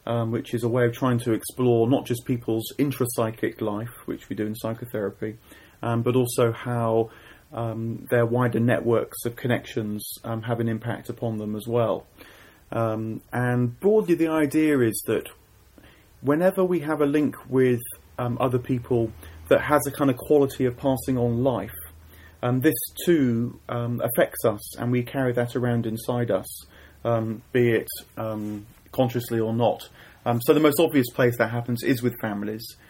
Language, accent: English, British